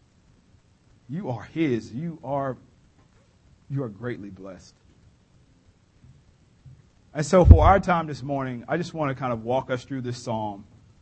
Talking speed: 145 wpm